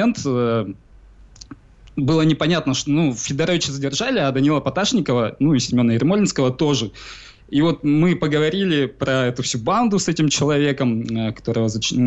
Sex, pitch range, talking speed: male, 120-150 Hz, 130 wpm